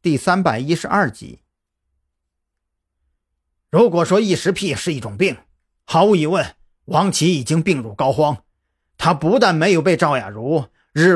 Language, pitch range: Chinese, 115-195 Hz